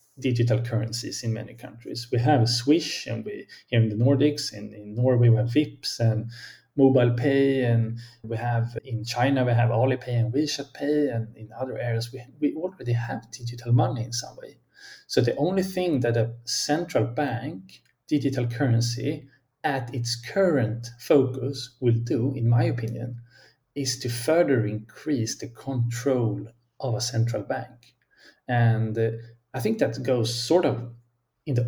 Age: 30-49